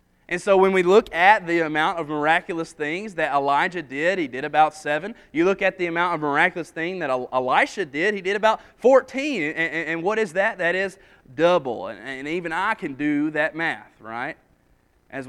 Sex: male